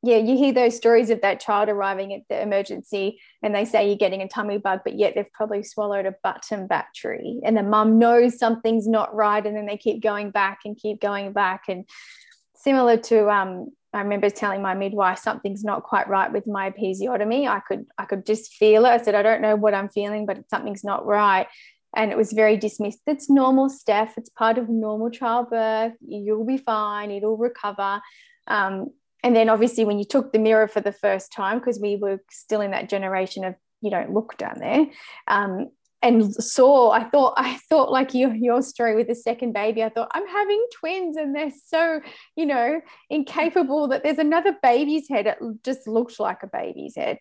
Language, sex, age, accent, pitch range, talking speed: English, female, 20-39, Australian, 205-255 Hz, 205 wpm